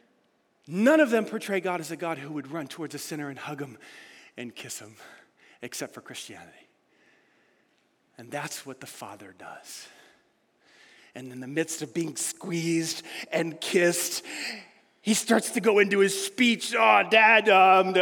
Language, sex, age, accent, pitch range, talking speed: English, male, 40-59, American, 195-305 Hz, 160 wpm